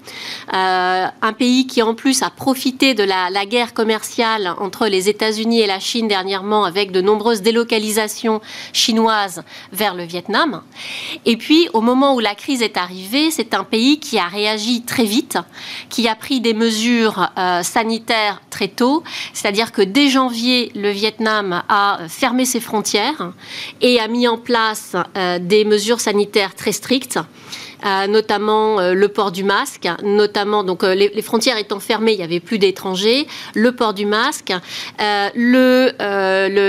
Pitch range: 200-240 Hz